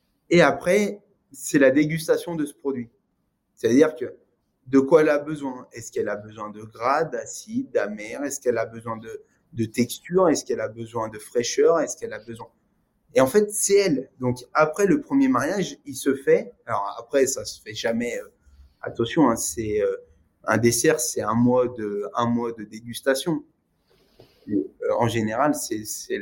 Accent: French